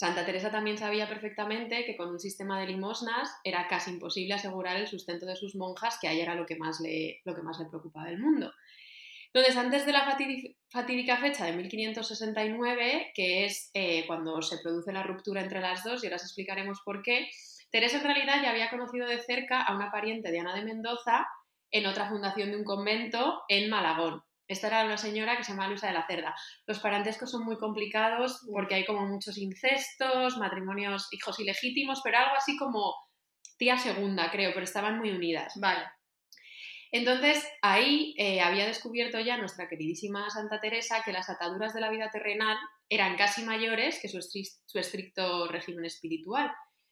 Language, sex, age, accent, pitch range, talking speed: Spanish, female, 20-39, Spanish, 190-235 Hz, 185 wpm